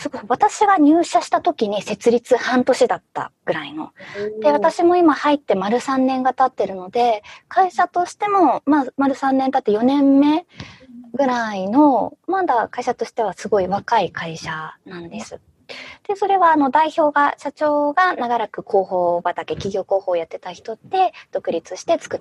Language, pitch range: Japanese, 195-320 Hz